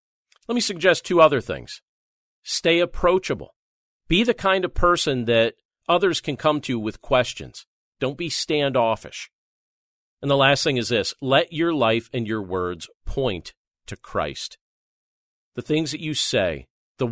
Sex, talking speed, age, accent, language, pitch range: male, 155 wpm, 40-59, American, English, 110-160 Hz